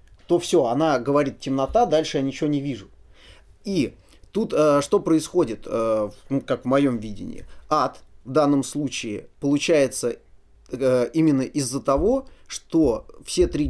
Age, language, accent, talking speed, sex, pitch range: 20-39, Russian, native, 150 wpm, male, 130-175 Hz